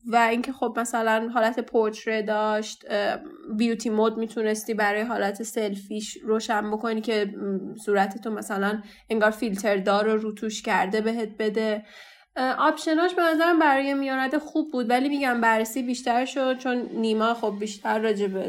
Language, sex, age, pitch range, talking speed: Persian, female, 10-29, 220-270 Hz, 145 wpm